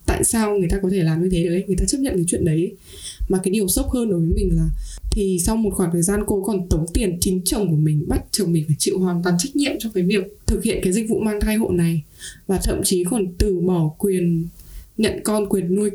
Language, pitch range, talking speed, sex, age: Vietnamese, 175-205 Hz, 270 wpm, female, 20-39